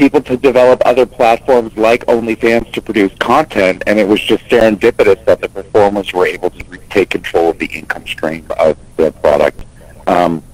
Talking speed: 175 wpm